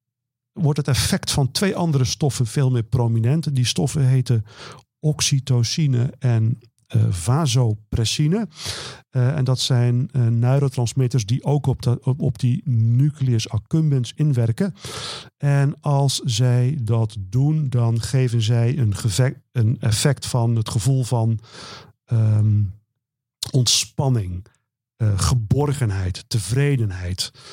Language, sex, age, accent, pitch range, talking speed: Dutch, male, 50-69, Dutch, 115-135 Hz, 110 wpm